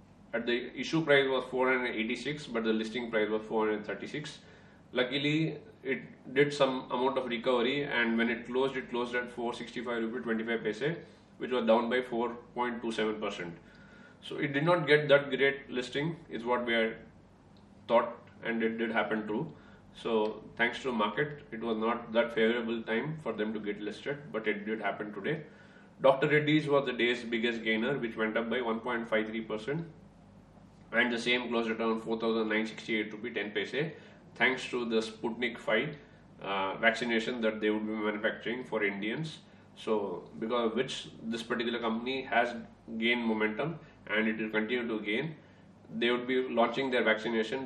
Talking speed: 165 wpm